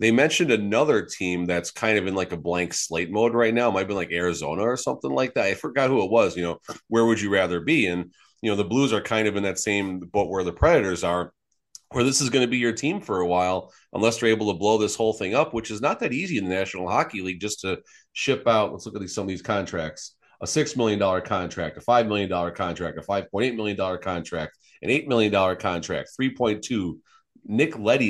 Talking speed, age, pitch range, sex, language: 245 wpm, 30-49, 90-110 Hz, male, English